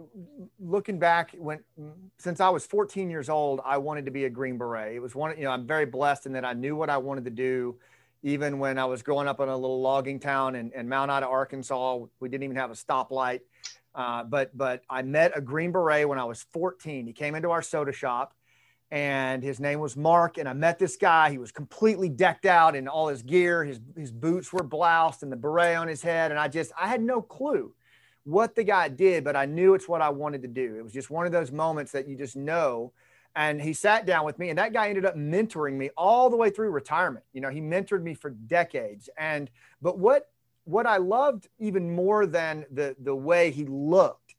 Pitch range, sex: 135-175 Hz, male